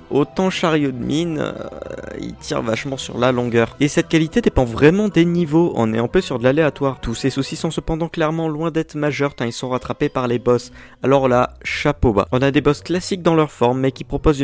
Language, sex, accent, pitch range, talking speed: French, male, French, 120-155 Hz, 235 wpm